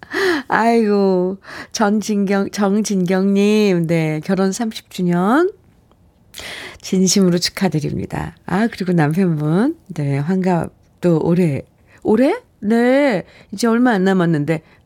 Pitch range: 175-245 Hz